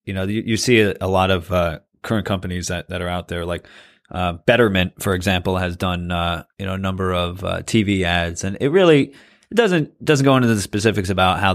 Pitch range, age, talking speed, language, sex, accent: 90-110 Hz, 30-49, 235 wpm, English, male, American